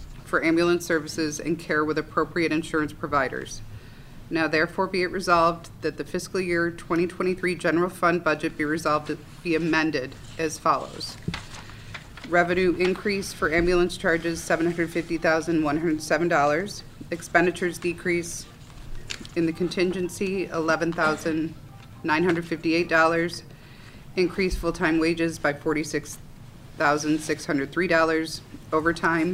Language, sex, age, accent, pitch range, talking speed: English, female, 30-49, American, 145-170 Hz, 95 wpm